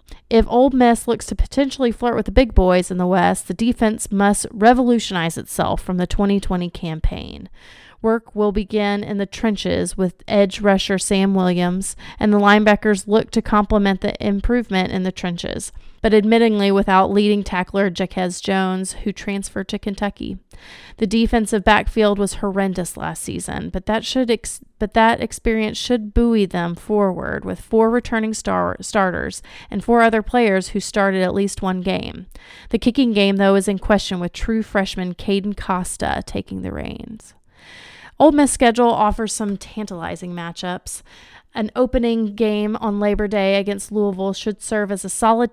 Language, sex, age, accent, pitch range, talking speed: English, female, 30-49, American, 190-225 Hz, 165 wpm